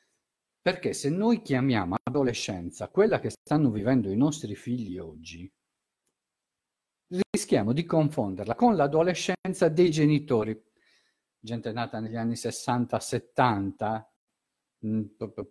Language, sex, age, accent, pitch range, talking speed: Italian, male, 50-69, native, 110-160 Hz, 95 wpm